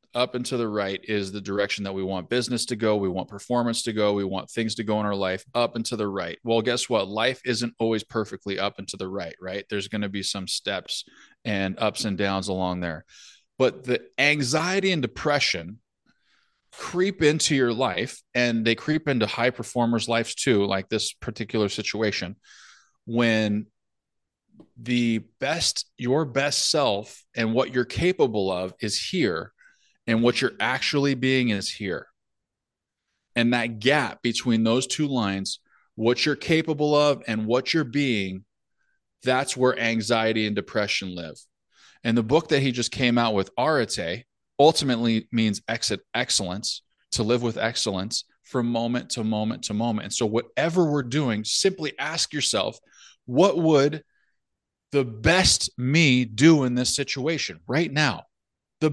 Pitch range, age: 105-130 Hz, 20-39